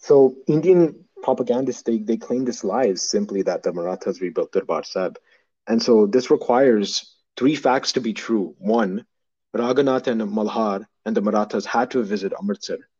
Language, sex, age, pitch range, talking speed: English, male, 30-49, 105-130 Hz, 160 wpm